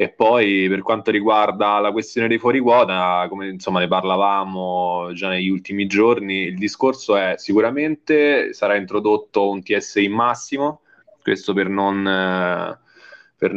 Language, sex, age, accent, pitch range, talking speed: Italian, male, 20-39, native, 95-105 Hz, 140 wpm